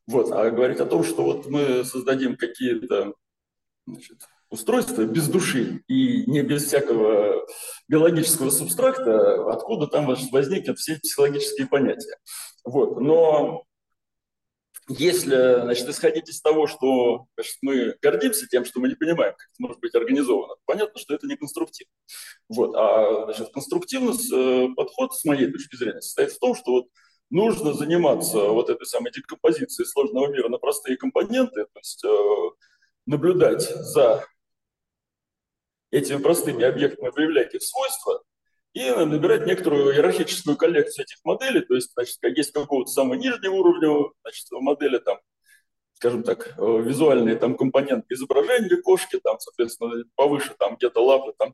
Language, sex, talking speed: Russian, male, 140 wpm